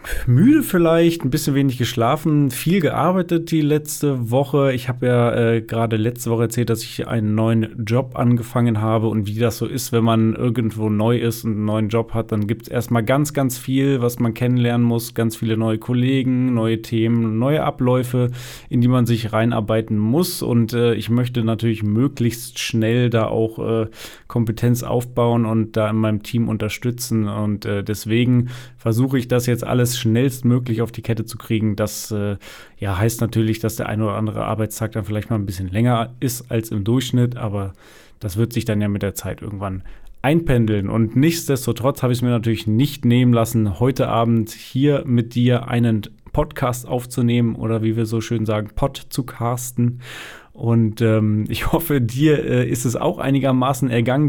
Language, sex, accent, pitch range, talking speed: German, male, German, 110-130 Hz, 185 wpm